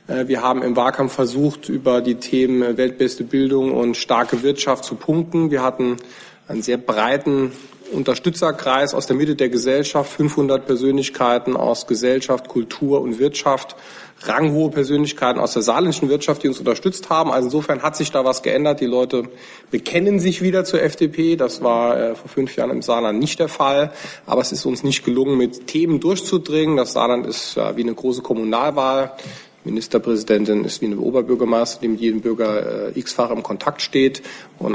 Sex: male